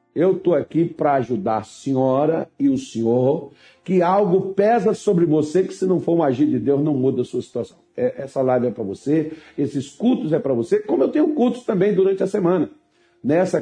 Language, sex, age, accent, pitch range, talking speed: Portuguese, male, 60-79, Brazilian, 135-195 Hz, 205 wpm